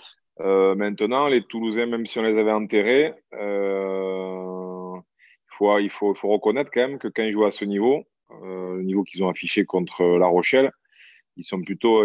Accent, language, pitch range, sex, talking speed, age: French, French, 95-115 Hz, male, 195 wpm, 20-39